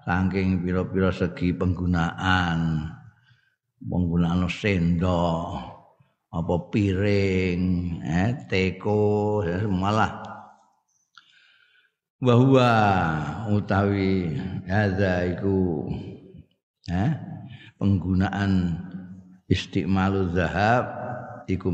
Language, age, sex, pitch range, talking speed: Indonesian, 50-69, male, 90-110 Hz, 60 wpm